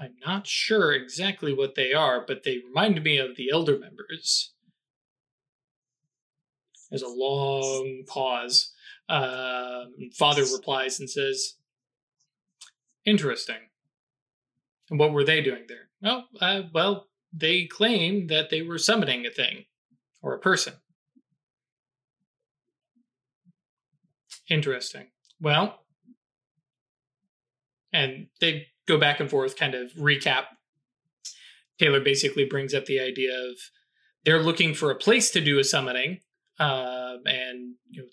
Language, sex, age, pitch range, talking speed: English, male, 20-39, 130-190 Hz, 120 wpm